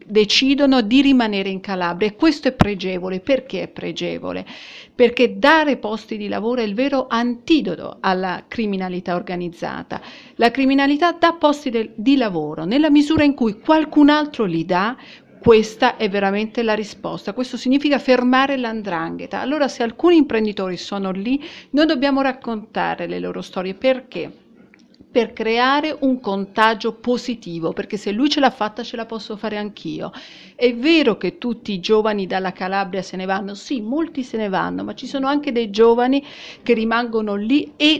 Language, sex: Italian, female